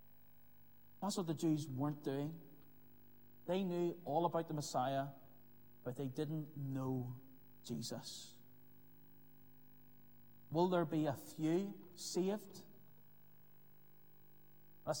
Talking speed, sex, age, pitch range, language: 95 wpm, male, 40-59, 160-210 Hz, English